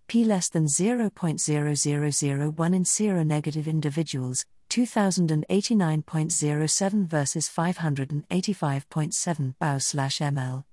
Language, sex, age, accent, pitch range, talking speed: English, female, 50-69, British, 150-205 Hz, 65 wpm